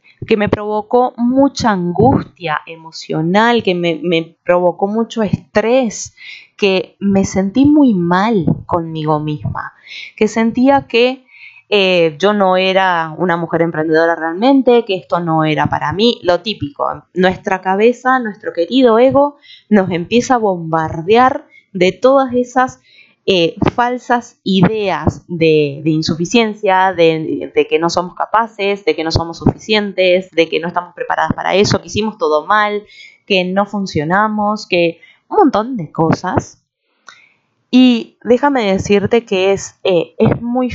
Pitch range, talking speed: 170-235 Hz, 135 wpm